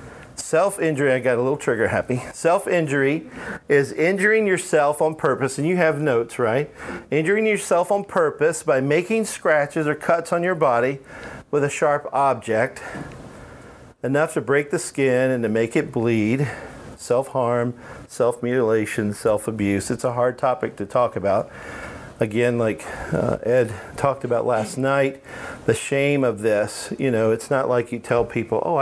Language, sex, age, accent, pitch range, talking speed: English, male, 40-59, American, 120-155 Hz, 155 wpm